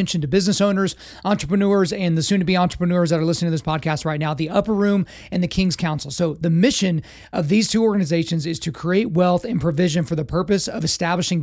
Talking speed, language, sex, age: 215 wpm, English, male, 30-49